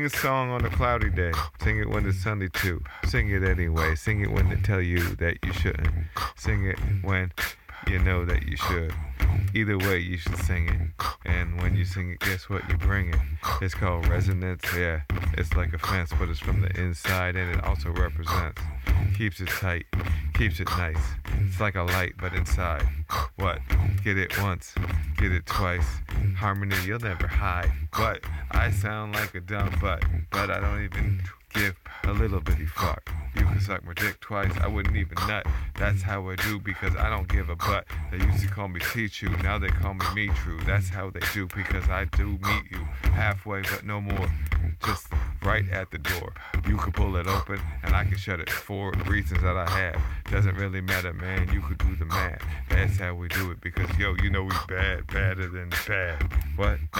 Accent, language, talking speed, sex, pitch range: American, English, 205 wpm, male, 85-100 Hz